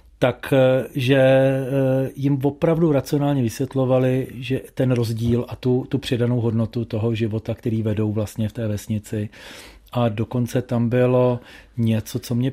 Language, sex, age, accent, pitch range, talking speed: Czech, male, 40-59, native, 115-130 Hz, 135 wpm